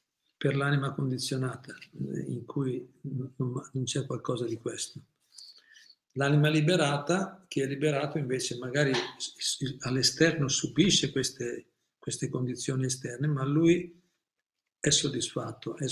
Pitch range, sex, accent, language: 130-150 Hz, male, native, Italian